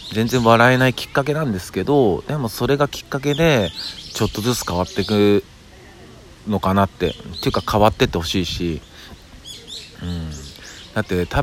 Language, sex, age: Japanese, male, 40-59